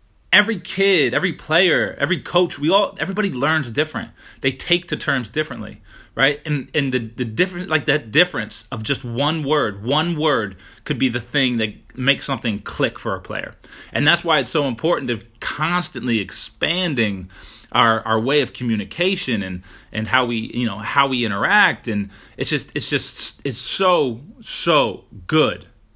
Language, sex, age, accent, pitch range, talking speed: English, male, 20-39, American, 110-150 Hz, 170 wpm